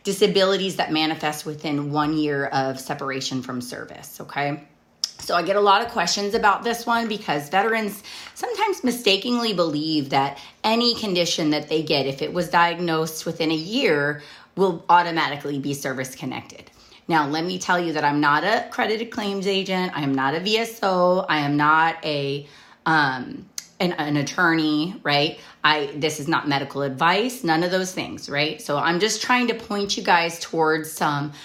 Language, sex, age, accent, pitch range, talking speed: English, female, 30-49, American, 150-190 Hz, 175 wpm